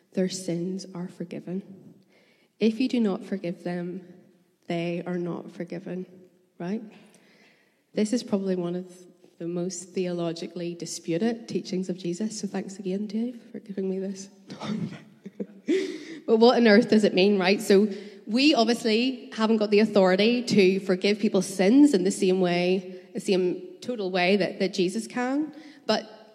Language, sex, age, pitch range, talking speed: English, female, 20-39, 185-220 Hz, 155 wpm